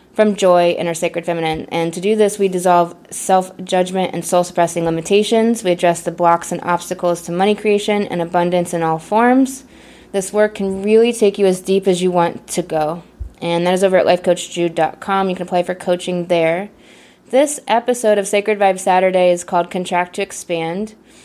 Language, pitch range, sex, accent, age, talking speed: English, 175-210 Hz, female, American, 20-39, 185 wpm